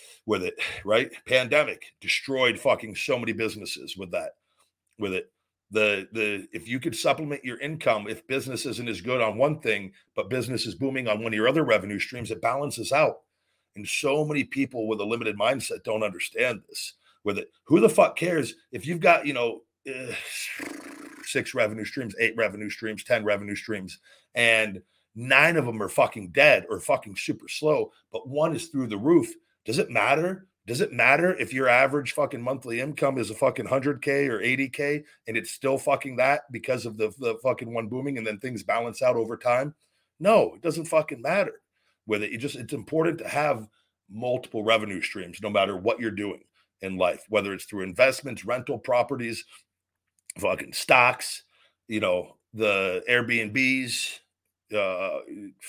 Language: English